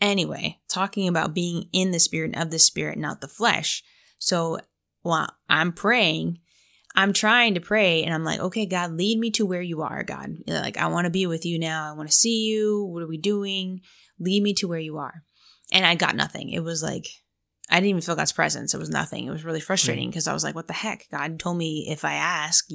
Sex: female